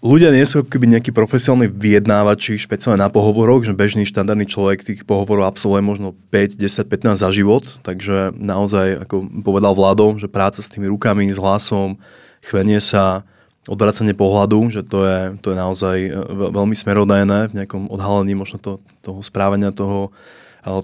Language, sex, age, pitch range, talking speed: Slovak, male, 20-39, 100-115 Hz, 155 wpm